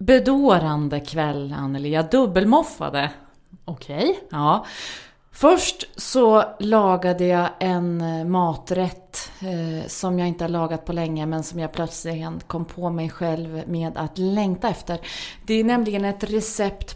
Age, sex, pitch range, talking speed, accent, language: 30-49, female, 165-225 Hz, 130 wpm, Swedish, English